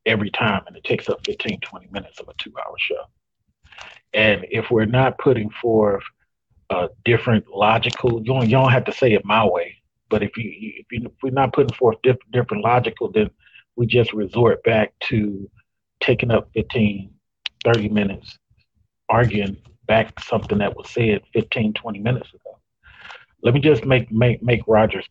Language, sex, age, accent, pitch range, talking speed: English, male, 40-59, American, 110-130 Hz, 175 wpm